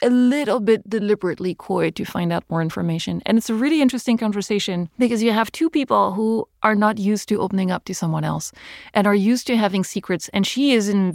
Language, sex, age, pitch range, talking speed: English, female, 30-49, 175-215 Hz, 225 wpm